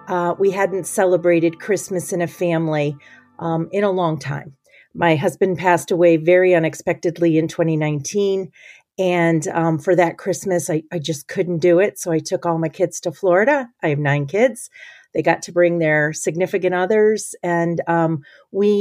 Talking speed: 170 wpm